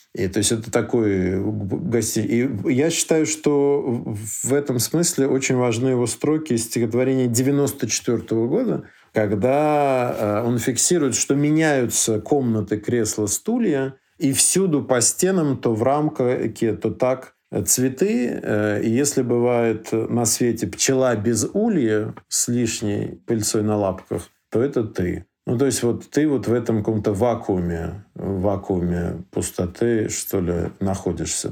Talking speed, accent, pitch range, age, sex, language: 135 wpm, native, 105-135 Hz, 50-69, male, Russian